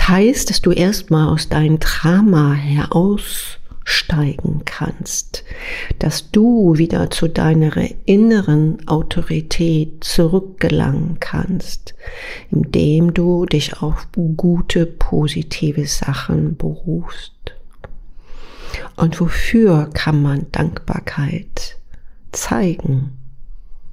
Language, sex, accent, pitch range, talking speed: German, female, German, 155-180 Hz, 80 wpm